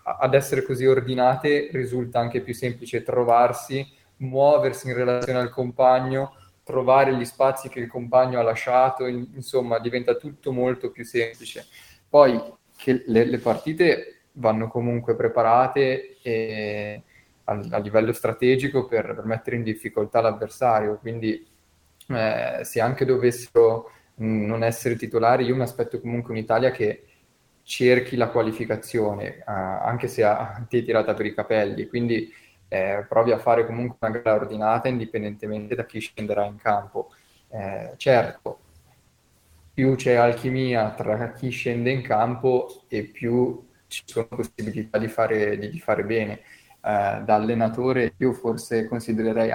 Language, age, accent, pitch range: Italian, 20-39, native, 110-125 Hz